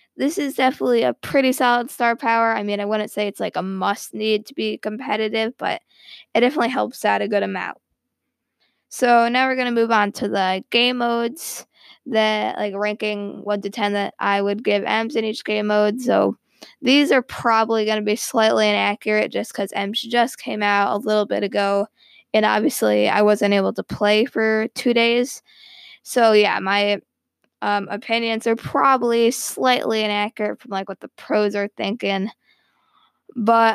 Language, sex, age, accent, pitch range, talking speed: English, female, 20-39, American, 205-235 Hz, 175 wpm